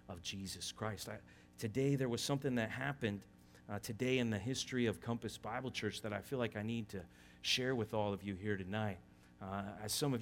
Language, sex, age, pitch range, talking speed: English, male, 30-49, 105-125 Hz, 205 wpm